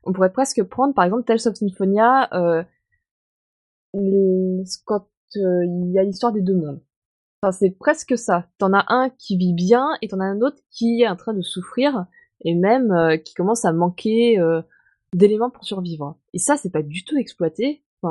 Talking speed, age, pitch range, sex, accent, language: 195 wpm, 20-39, 175-235 Hz, female, French, French